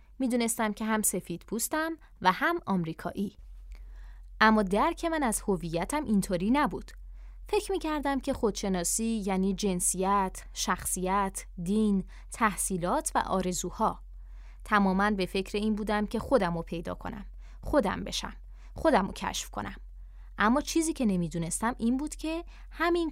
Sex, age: female, 20-39